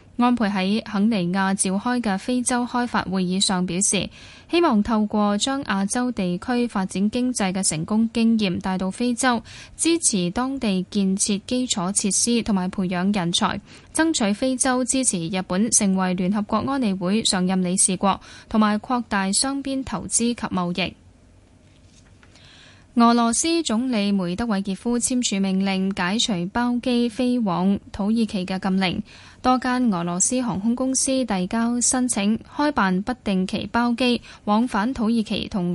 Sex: female